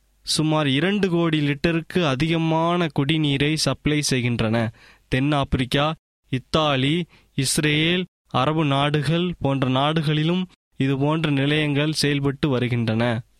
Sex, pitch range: male, 135-170 Hz